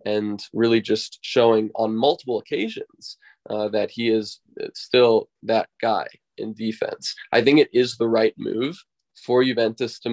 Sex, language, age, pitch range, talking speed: male, English, 20-39, 110-125 Hz, 155 wpm